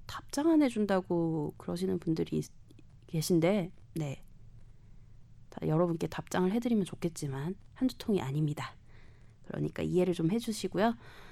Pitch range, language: 155-225 Hz, Korean